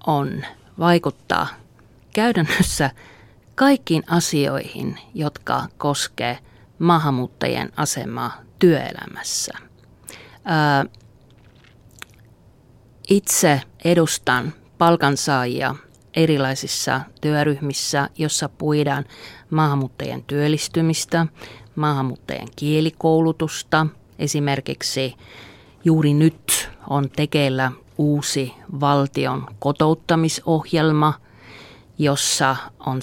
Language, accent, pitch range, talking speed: Finnish, native, 125-160 Hz, 60 wpm